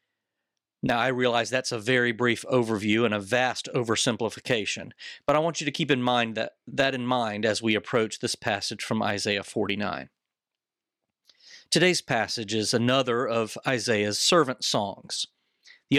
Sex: male